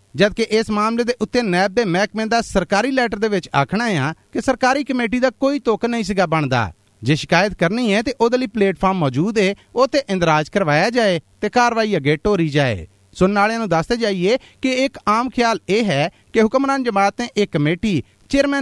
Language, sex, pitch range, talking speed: Punjabi, male, 155-225 Hz, 105 wpm